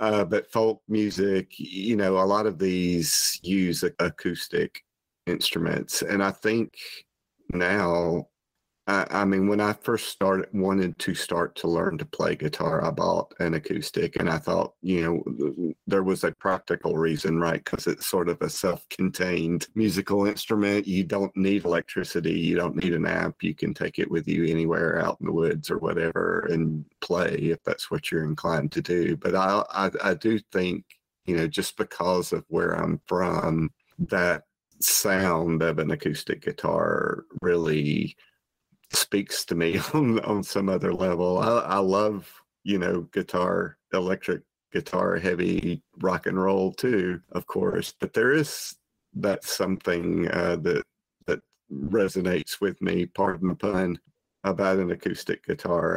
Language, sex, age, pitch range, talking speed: English, male, 40-59, 85-100 Hz, 160 wpm